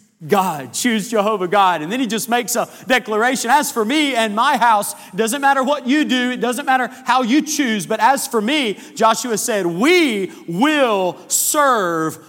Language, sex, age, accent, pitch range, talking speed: English, male, 40-59, American, 210-265 Hz, 185 wpm